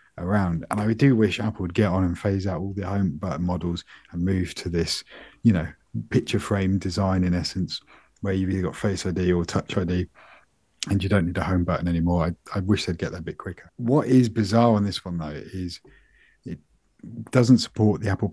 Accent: British